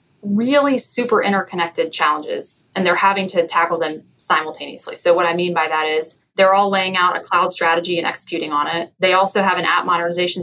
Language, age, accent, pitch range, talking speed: English, 20-39, American, 170-210 Hz, 200 wpm